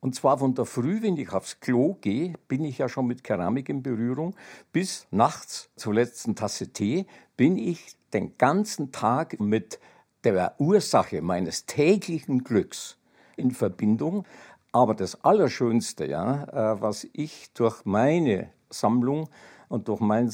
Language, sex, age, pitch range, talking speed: German, male, 60-79, 105-140 Hz, 145 wpm